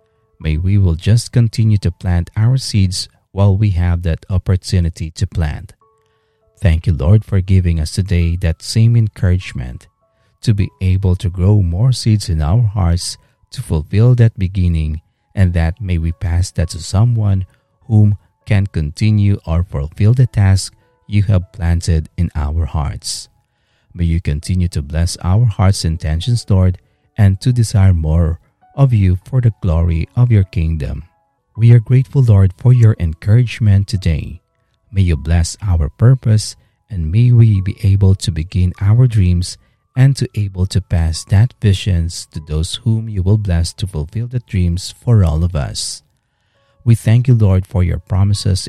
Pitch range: 85-110 Hz